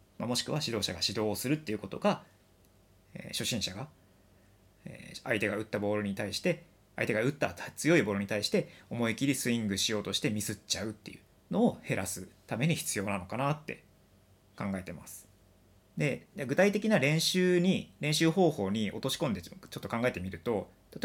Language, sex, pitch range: Japanese, male, 95-150 Hz